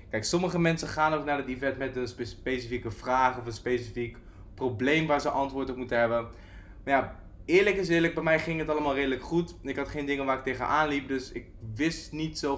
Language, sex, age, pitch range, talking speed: Dutch, male, 20-39, 115-145 Hz, 225 wpm